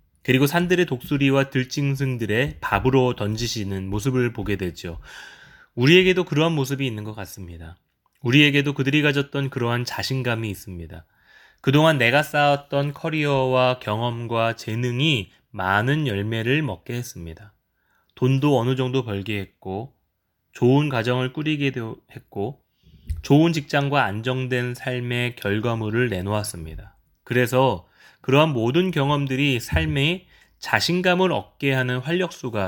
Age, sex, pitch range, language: 20-39, male, 105-140 Hz, Korean